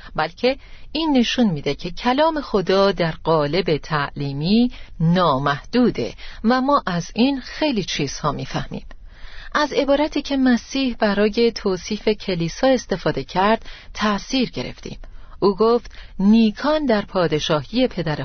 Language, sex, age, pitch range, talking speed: Persian, female, 40-59, 160-235 Hz, 115 wpm